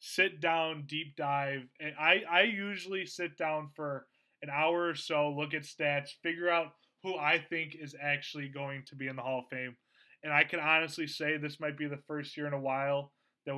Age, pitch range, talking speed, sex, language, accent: 20-39, 135-160 Hz, 210 wpm, male, English, American